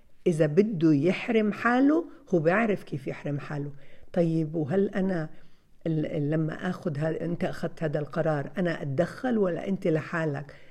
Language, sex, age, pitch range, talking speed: Arabic, female, 60-79, 155-220 Hz, 120 wpm